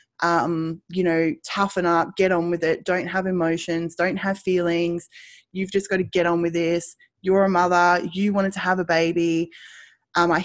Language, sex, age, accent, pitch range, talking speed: English, female, 20-39, Australian, 170-200 Hz, 195 wpm